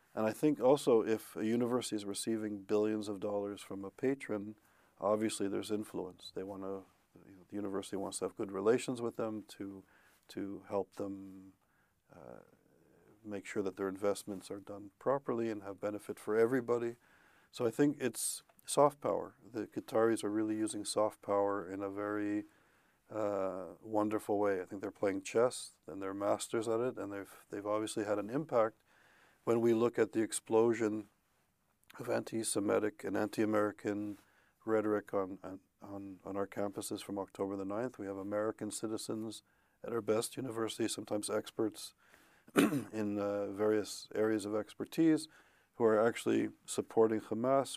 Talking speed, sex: 155 wpm, male